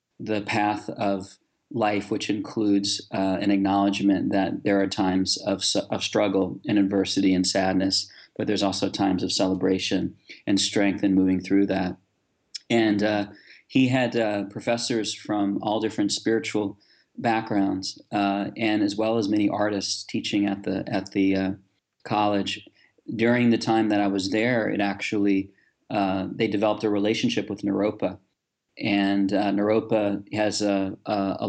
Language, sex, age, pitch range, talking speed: English, male, 40-59, 95-105 Hz, 150 wpm